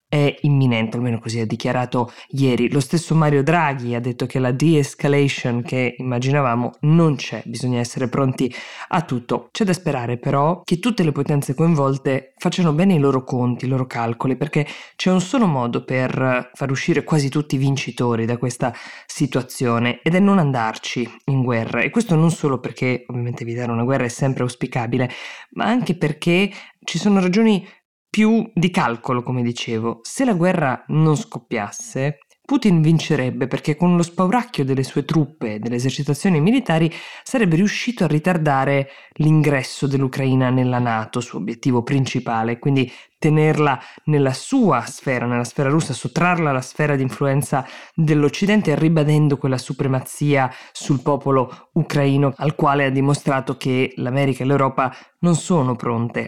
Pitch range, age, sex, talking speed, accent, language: 125-160 Hz, 20-39, female, 155 wpm, native, Italian